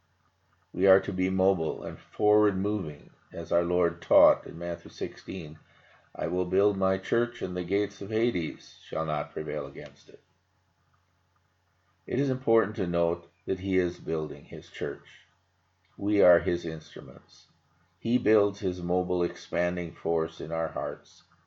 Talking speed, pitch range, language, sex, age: 150 wpm, 85-95 Hz, English, male, 50-69